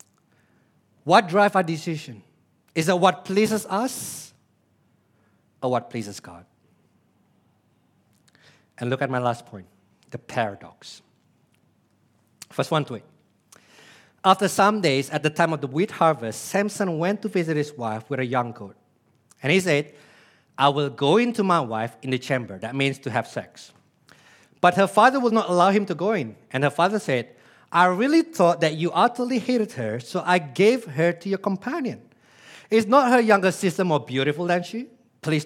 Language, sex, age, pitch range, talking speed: English, male, 50-69, 130-200 Hz, 170 wpm